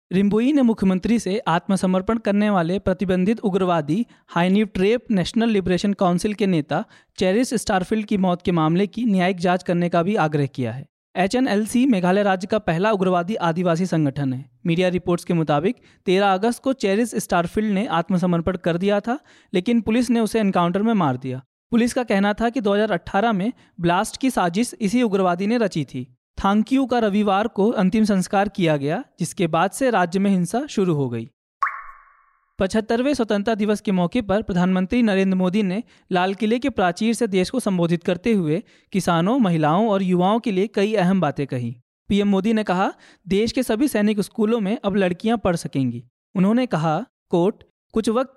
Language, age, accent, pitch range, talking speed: Hindi, 20-39, native, 180-225 Hz, 175 wpm